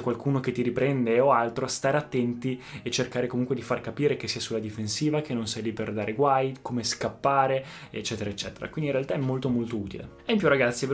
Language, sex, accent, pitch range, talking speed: Italian, male, native, 115-135 Hz, 230 wpm